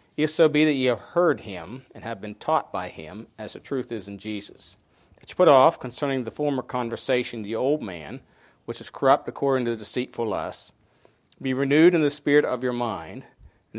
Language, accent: English, American